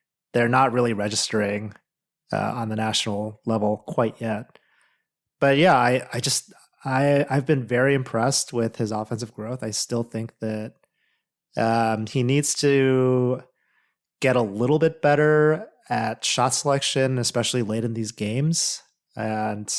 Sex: male